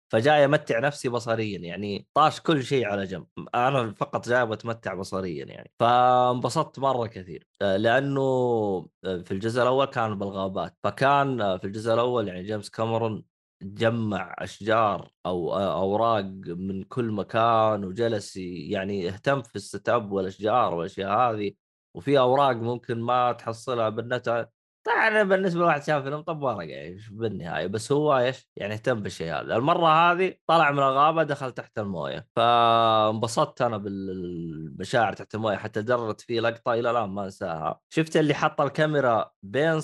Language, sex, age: Arabic, male, 20-39